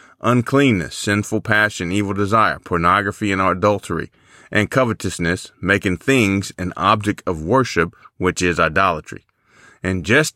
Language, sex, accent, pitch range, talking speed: English, male, American, 100-125 Hz, 120 wpm